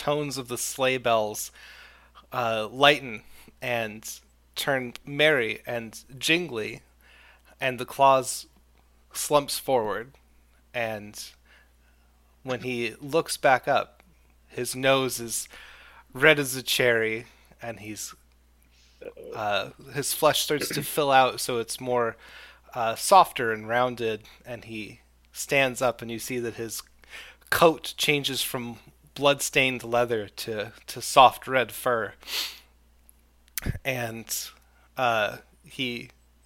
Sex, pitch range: male, 80-130 Hz